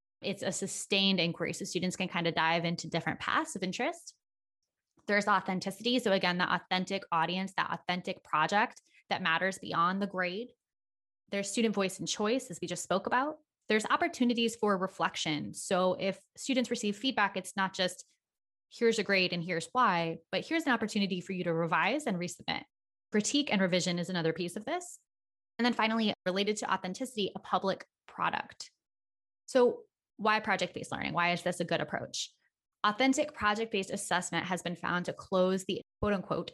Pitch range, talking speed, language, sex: 175-220 Hz, 170 wpm, English, female